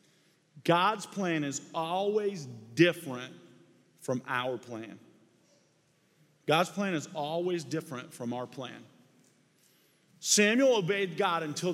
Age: 40-59